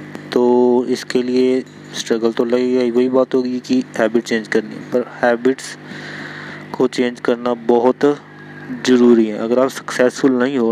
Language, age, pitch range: Hindi, 20-39, 120-130 Hz